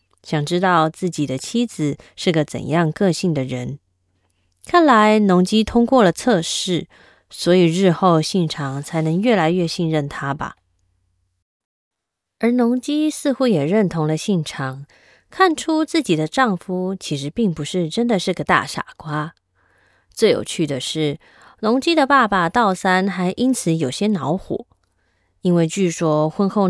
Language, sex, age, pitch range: Chinese, female, 20-39, 150-210 Hz